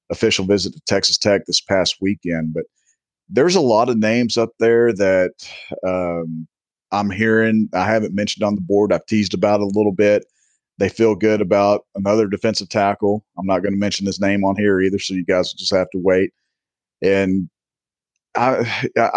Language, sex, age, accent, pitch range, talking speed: English, male, 40-59, American, 95-110 Hz, 190 wpm